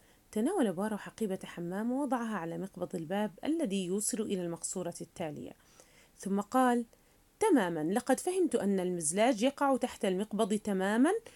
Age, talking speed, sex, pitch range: 30-49, 125 wpm, female, 195-320 Hz